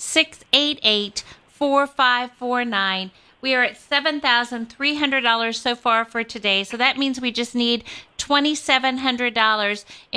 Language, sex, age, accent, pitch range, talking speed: English, female, 50-69, American, 210-245 Hz, 95 wpm